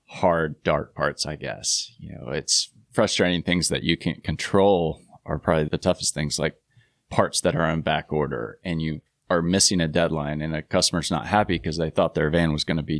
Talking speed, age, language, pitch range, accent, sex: 210 wpm, 30-49, English, 80-95 Hz, American, male